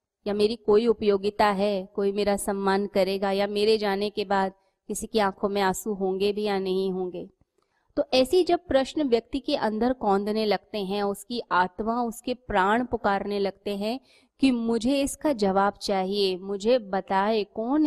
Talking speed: 165 wpm